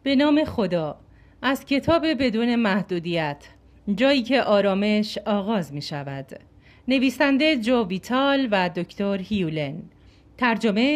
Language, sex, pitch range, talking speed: Persian, female, 180-275 Hz, 110 wpm